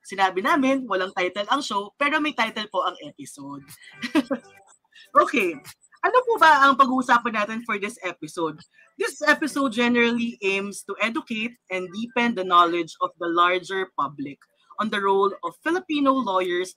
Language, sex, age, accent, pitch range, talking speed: Filipino, female, 20-39, native, 175-255 Hz, 150 wpm